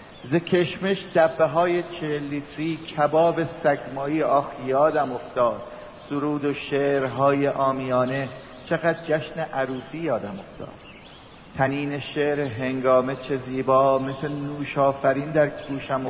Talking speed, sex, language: 105 wpm, male, English